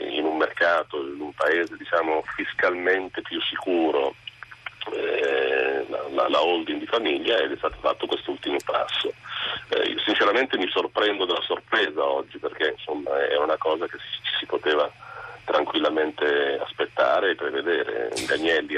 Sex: male